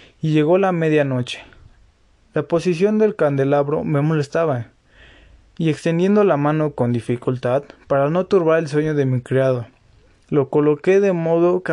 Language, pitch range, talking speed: Spanish, 130-160 Hz, 150 wpm